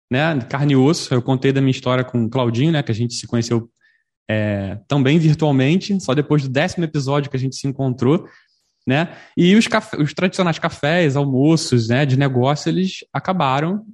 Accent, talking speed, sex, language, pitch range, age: Brazilian, 190 wpm, male, Portuguese, 125-160 Hz, 20-39